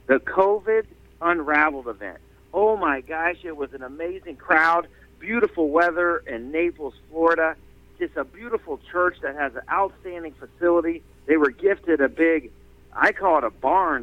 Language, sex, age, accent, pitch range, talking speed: English, male, 50-69, American, 145-200 Hz, 155 wpm